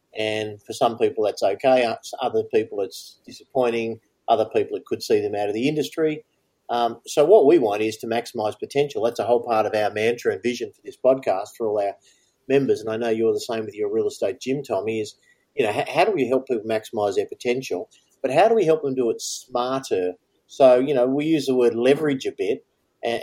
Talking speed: 230 wpm